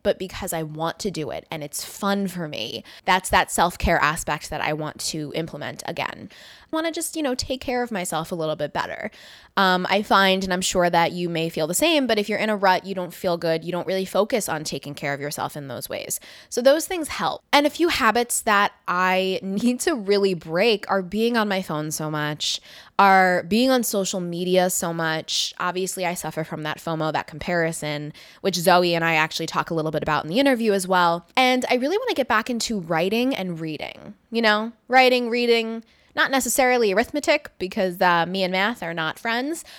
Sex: female